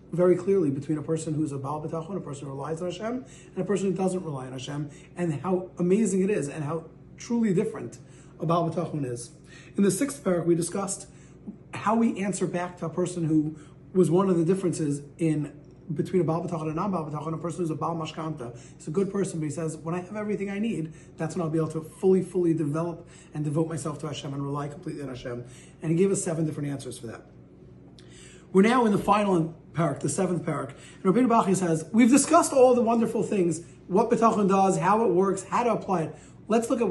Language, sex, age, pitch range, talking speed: English, male, 30-49, 160-195 Hz, 230 wpm